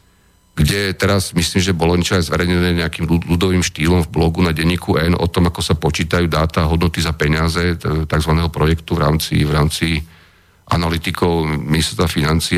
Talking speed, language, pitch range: 160 wpm, Slovak, 85-95 Hz